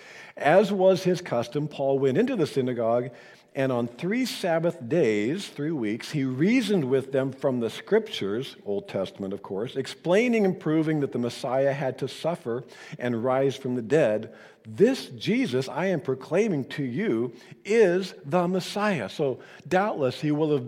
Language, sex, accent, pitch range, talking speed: English, male, American, 120-170 Hz, 165 wpm